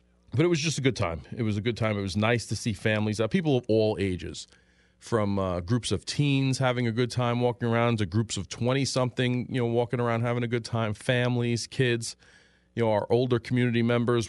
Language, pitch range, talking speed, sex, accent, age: English, 100-120 Hz, 225 wpm, male, American, 40-59